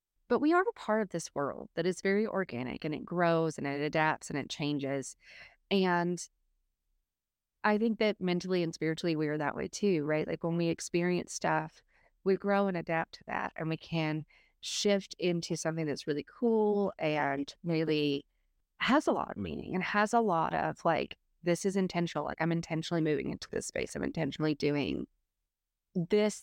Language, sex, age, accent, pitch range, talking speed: English, female, 30-49, American, 155-185 Hz, 185 wpm